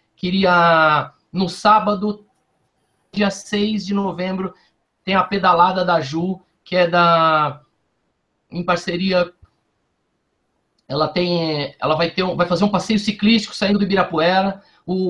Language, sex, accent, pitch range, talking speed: Portuguese, male, Brazilian, 170-205 Hz, 125 wpm